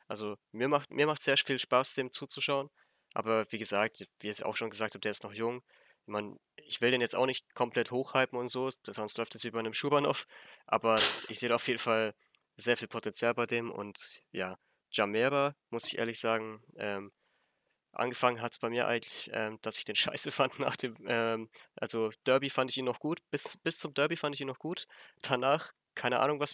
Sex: male